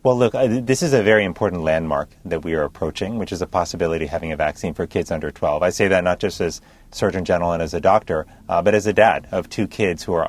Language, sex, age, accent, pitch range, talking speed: English, male, 30-49, American, 85-105 Hz, 270 wpm